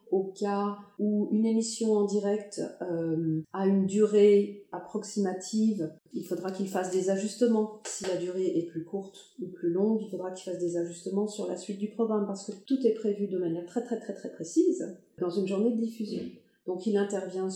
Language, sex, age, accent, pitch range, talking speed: French, female, 40-59, French, 175-210 Hz, 200 wpm